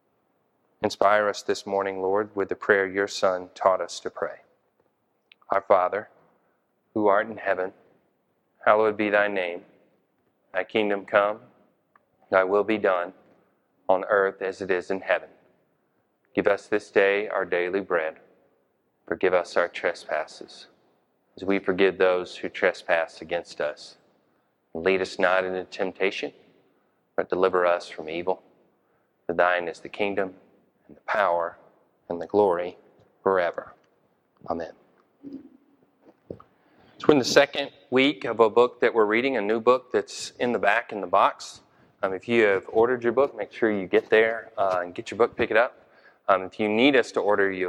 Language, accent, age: English, American, 30-49